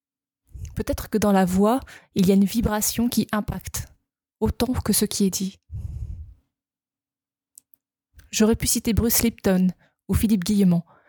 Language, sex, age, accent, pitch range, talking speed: French, female, 20-39, French, 190-220 Hz, 140 wpm